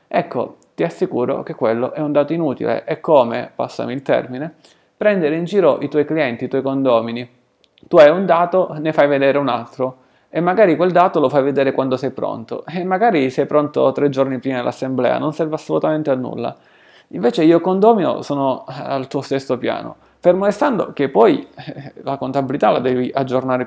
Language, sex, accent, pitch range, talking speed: Italian, male, native, 130-160 Hz, 185 wpm